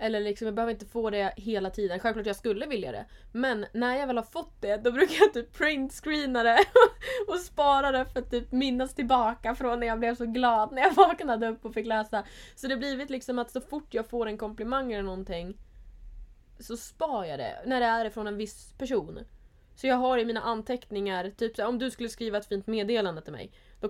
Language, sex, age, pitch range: Swedish, female, 20-39, 215-265 Hz